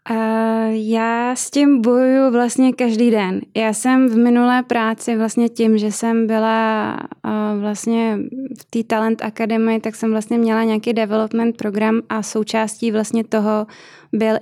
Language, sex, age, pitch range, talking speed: Czech, female, 20-39, 210-230 Hz, 145 wpm